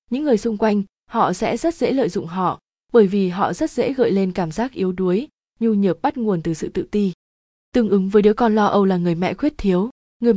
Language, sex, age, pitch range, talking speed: Vietnamese, female, 20-39, 185-225 Hz, 250 wpm